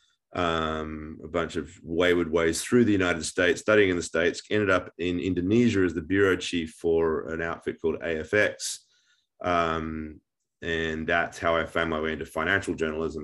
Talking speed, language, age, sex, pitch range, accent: 170 wpm, English, 30-49, male, 80-95 Hz, Australian